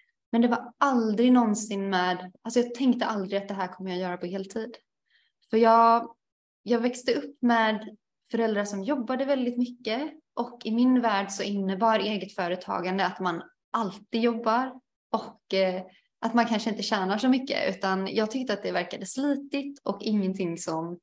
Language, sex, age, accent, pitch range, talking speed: Swedish, female, 20-39, native, 200-240 Hz, 165 wpm